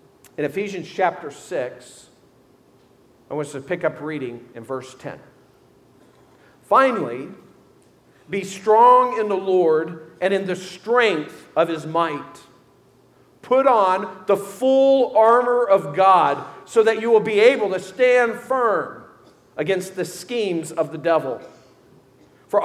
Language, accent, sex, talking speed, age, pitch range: English, American, male, 130 wpm, 50-69, 170-225 Hz